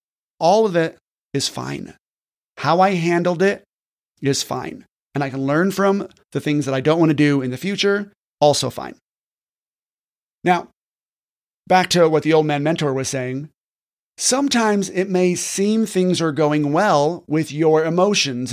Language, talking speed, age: English, 160 wpm, 30-49